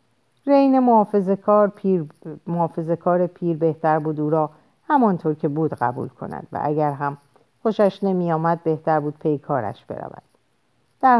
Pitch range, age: 150-210 Hz, 50-69